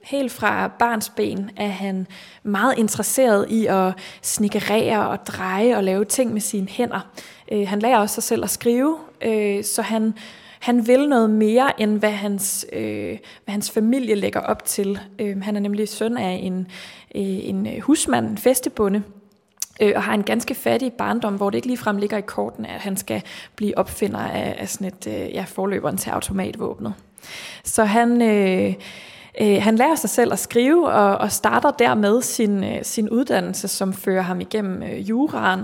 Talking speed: 160 wpm